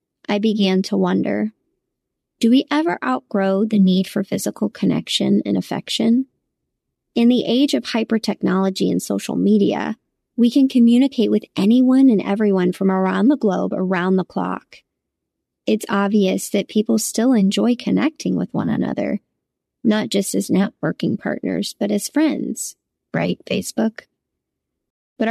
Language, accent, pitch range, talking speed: English, American, 200-250 Hz, 140 wpm